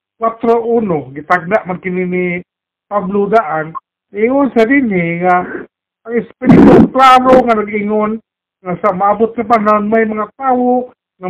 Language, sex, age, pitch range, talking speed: Filipino, male, 50-69, 200-235 Hz, 125 wpm